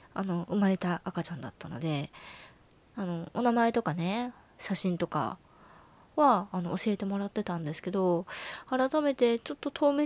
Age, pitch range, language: 20-39, 175-250 Hz, Japanese